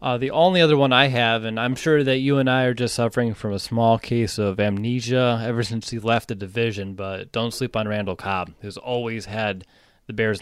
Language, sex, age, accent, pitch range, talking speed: English, male, 20-39, American, 105-135 Hz, 230 wpm